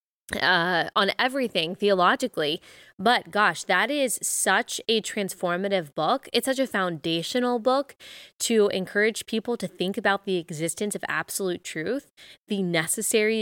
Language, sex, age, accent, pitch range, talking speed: English, female, 20-39, American, 180-235 Hz, 135 wpm